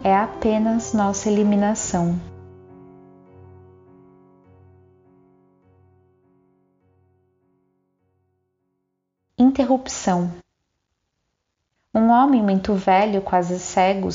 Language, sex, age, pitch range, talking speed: Portuguese, female, 20-39, 180-230 Hz, 45 wpm